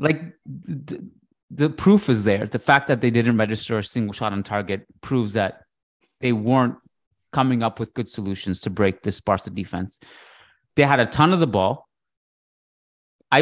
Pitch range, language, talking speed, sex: 105-135 Hz, English, 175 wpm, male